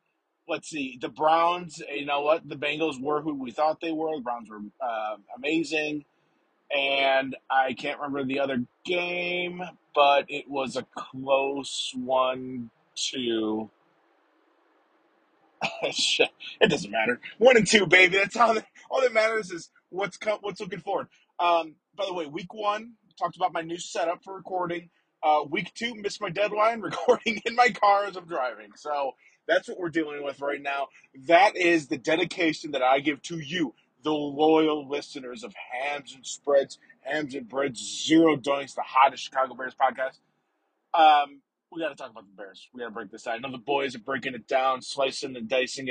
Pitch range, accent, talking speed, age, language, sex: 135-185 Hz, American, 180 wpm, 30-49, English, male